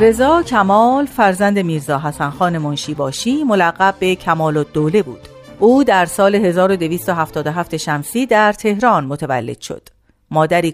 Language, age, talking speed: Persian, 40-59, 130 wpm